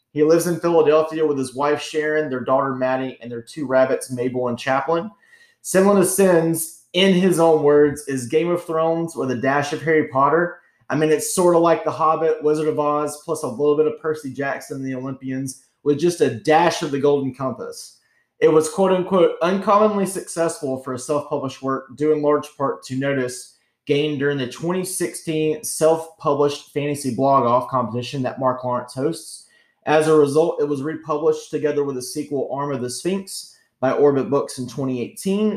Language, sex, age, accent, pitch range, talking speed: English, male, 30-49, American, 135-165 Hz, 190 wpm